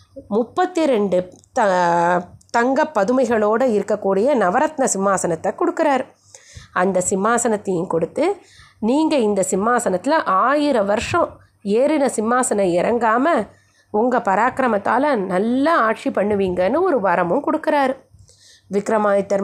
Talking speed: 90 wpm